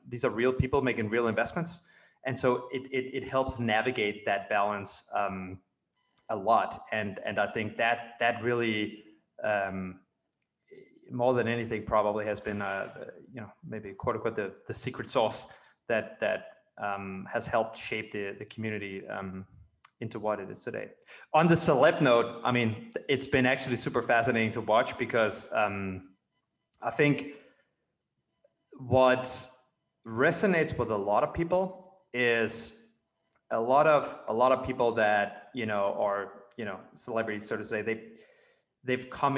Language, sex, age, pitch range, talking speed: English, male, 20-39, 110-130 Hz, 160 wpm